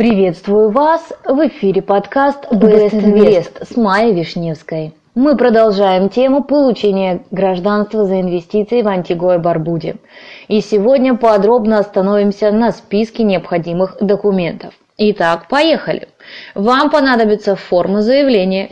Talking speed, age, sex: 110 wpm, 20-39, female